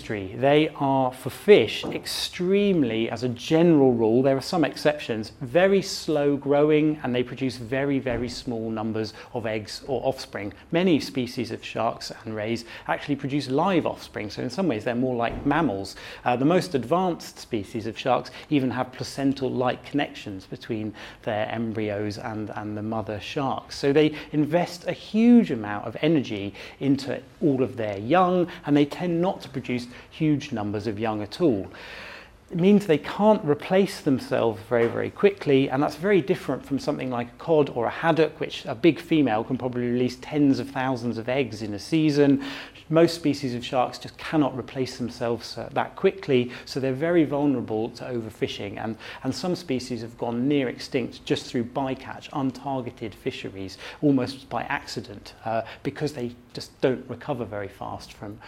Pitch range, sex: 115-150 Hz, male